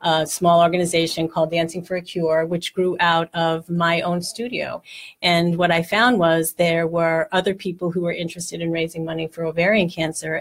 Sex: female